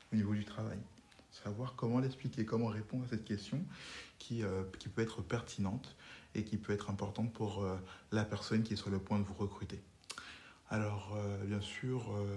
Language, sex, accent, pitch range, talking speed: French, male, French, 100-115 Hz, 195 wpm